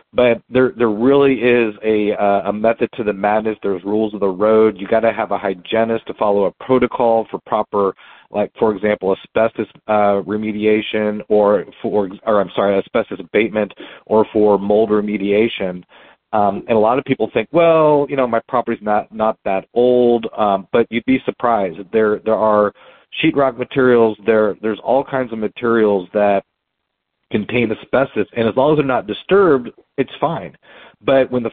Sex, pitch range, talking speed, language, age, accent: male, 105-120 Hz, 175 wpm, English, 40-59, American